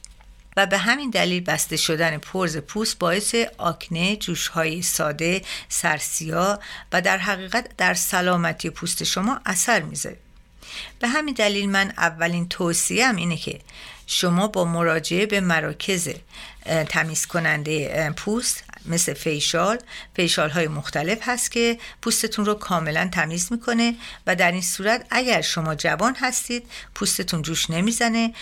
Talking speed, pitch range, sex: 130 wpm, 160-210 Hz, female